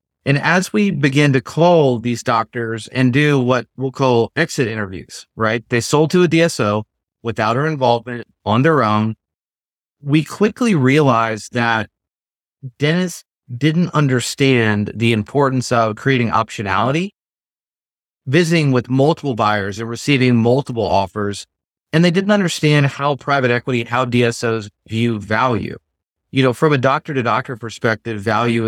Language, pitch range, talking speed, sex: English, 110-140 Hz, 140 wpm, male